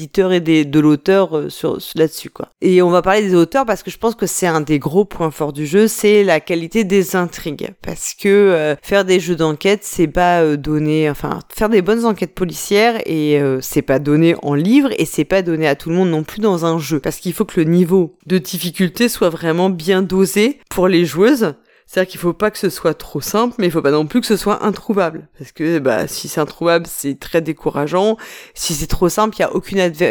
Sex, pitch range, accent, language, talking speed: female, 155-200 Hz, French, French, 235 wpm